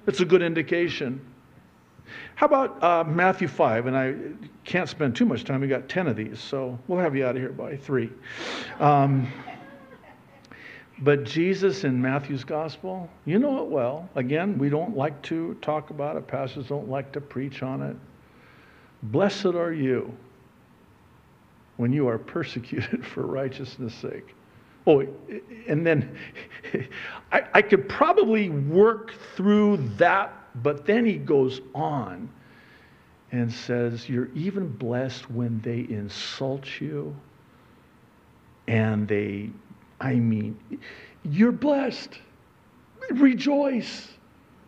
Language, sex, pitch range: English, male, 130-195 Hz